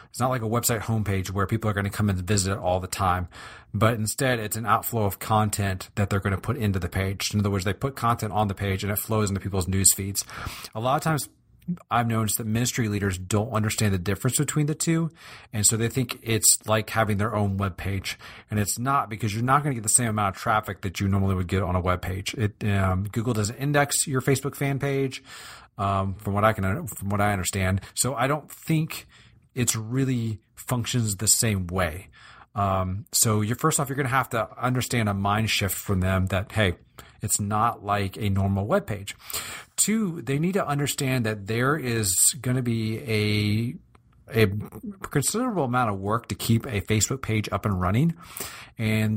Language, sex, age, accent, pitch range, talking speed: English, male, 40-59, American, 100-125 Hz, 215 wpm